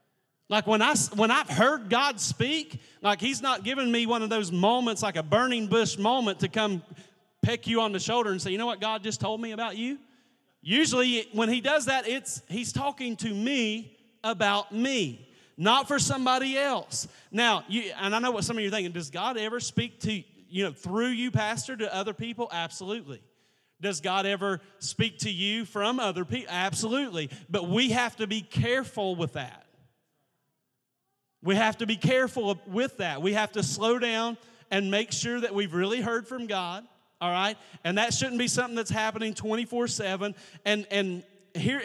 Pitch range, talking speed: 175-230 Hz, 190 wpm